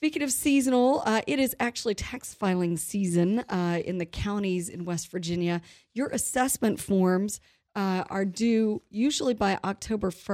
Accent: American